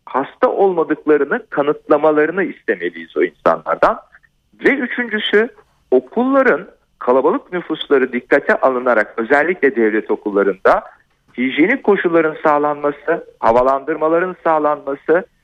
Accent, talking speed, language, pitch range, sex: native, 80 wpm, Turkish, 125-170 Hz, male